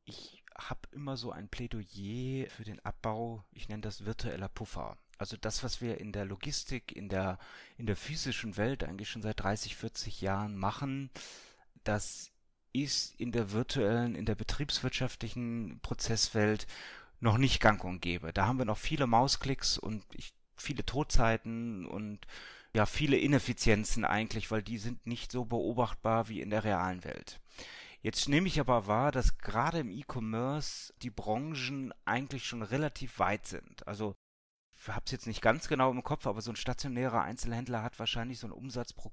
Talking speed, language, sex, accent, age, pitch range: 165 wpm, German, male, German, 30-49, 105-130 Hz